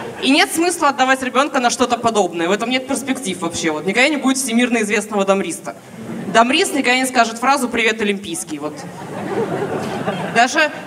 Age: 20-39